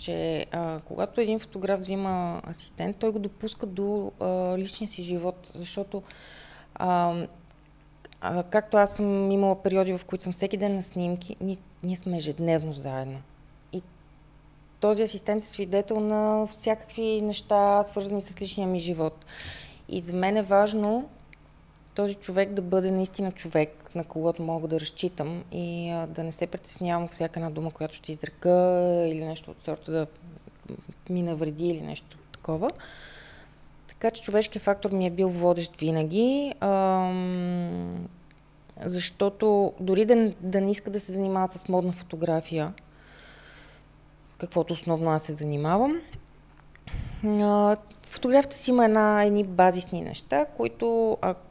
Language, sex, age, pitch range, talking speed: Bulgarian, female, 30-49, 165-205 Hz, 140 wpm